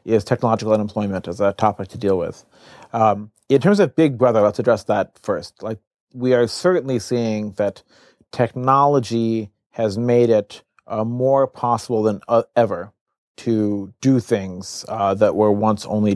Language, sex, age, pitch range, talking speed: English, male, 40-59, 110-135 Hz, 160 wpm